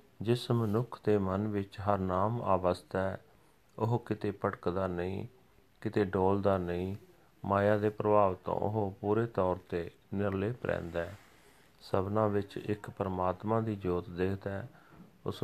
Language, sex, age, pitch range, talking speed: Punjabi, male, 40-59, 95-105 Hz, 135 wpm